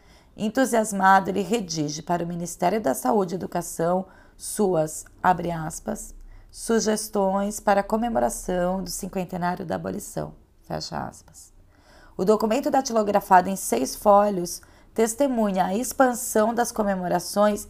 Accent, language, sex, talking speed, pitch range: Brazilian, Portuguese, female, 115 wpm, 180-225 Hz